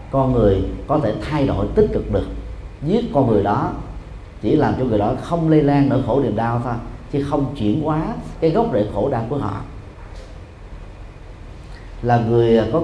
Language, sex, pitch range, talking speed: Vietnamese, male, 100-130 Hz, 185 wpm